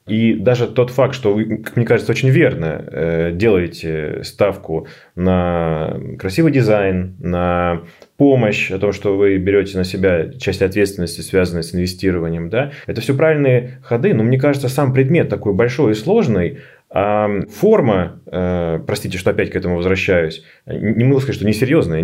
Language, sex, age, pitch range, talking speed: Russian, male, 30-49, 95-125 Hz, 160 wpm